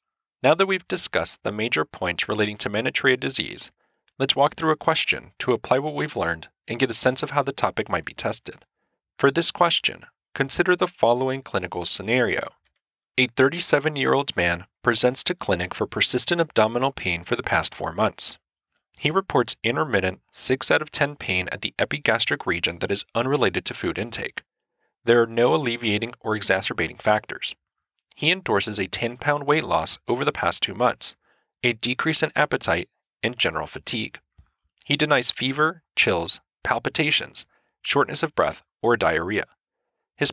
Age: 30-49